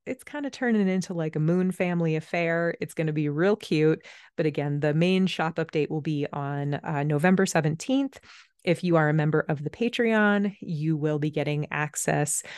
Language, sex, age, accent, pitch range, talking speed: English, female, 30-49, American, 155-210 Hz, 195 wpm